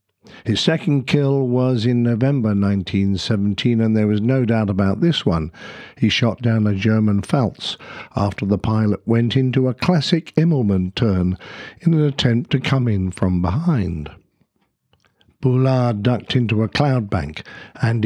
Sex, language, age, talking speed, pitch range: male, English, 60-79, 150 wpm, 105-130 Hz